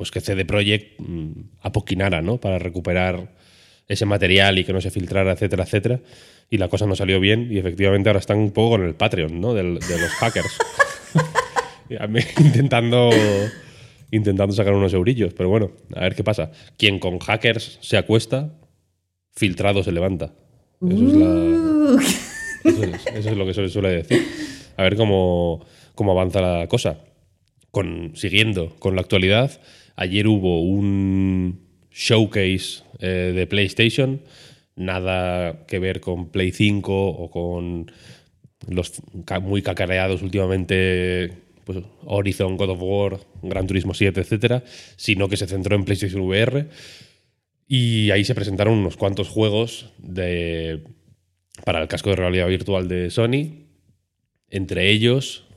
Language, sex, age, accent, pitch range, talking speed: Spanish, male, 20-39, Spanish, 95-110 Hz, 140 wpm